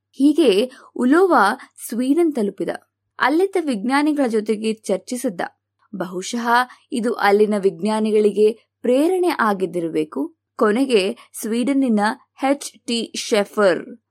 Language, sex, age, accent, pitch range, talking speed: Kannada, female, 20-39, native, 200-265 Hz, 80 wpm